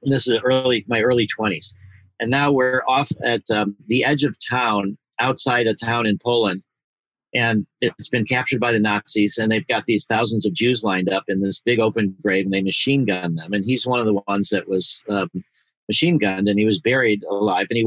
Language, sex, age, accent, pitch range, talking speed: English, male, 50-69, American, 105-125 Hz, 220 wpm